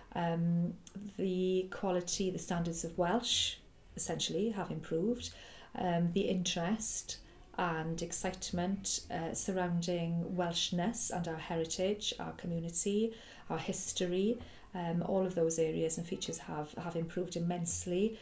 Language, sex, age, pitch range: English, female, 40-59, 170-200 Hz